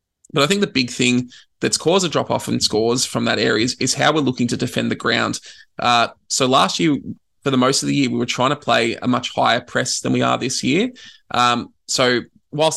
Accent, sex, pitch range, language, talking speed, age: Australian, male, 115-130 Hz, English, 240 wpm, 20-39